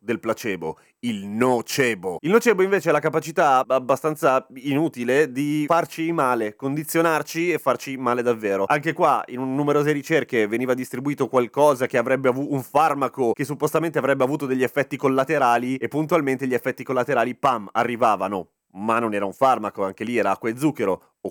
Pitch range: 125-165 Hz